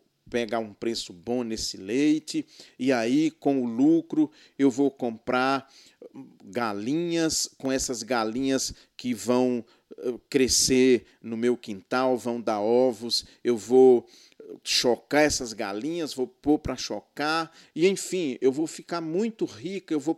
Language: Portuguese